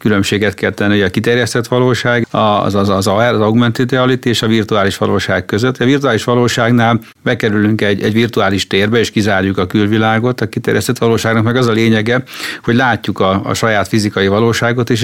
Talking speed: 180 wpm